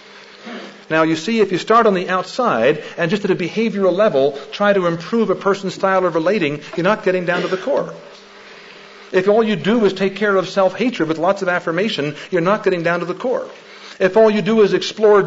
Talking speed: 220 wpm